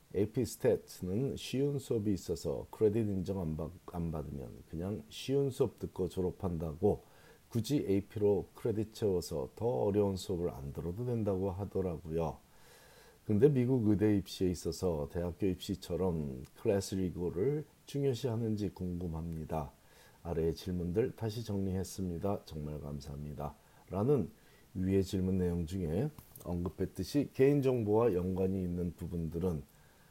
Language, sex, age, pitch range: Korean, male, 40-59, 85-110 Hz